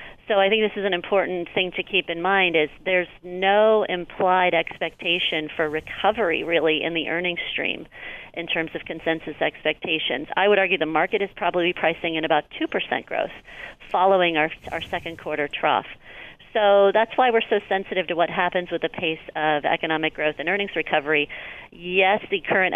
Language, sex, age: English, female, 40-59